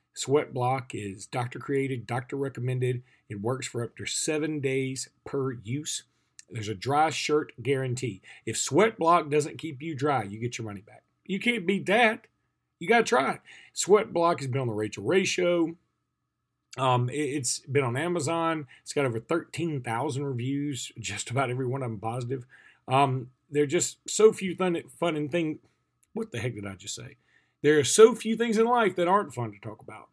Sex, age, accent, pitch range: male, 40-59, American, 125-175 Hz